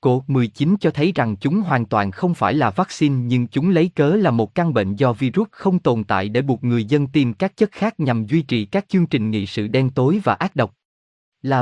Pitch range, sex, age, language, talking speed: 115-175 Hz, male, 20-39, Vietnamese, 245 wpm